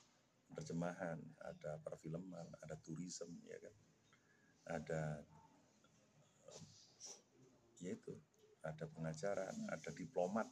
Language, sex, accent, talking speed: Indonesian, male, native, 75 wpm